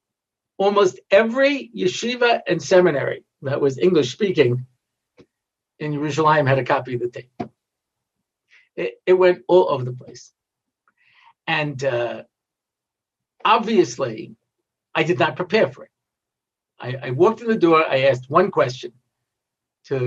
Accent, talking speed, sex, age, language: American, 130 wpm, male, 50-69, English